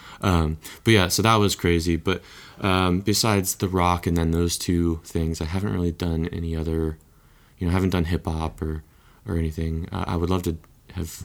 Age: 20-39